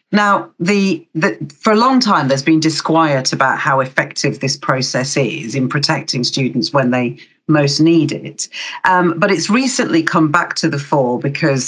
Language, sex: English, female